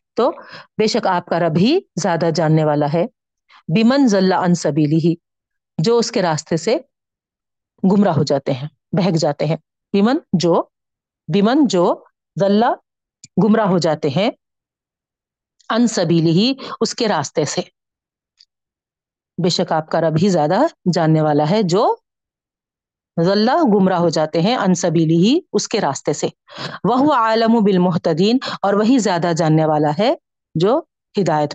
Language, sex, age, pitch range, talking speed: Urdu, female, 50-69, 160-215 Hz, 140 wpm